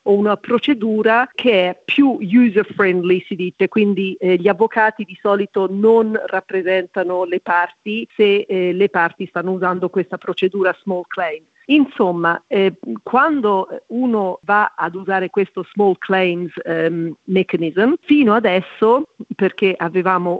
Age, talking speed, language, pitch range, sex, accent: 50-69, 130 wpm, Italian, 185-225 Hz, female, native